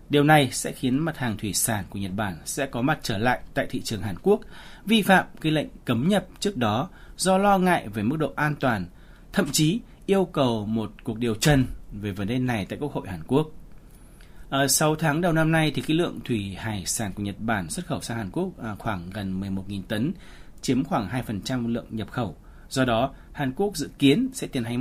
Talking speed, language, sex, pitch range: 220 wpm, Vietnamese, male, 105-155 Hz